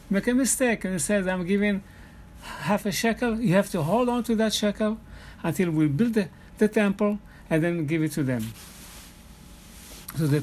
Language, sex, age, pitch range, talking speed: English, male, 60-79, 160-210 Hz, 190 wpm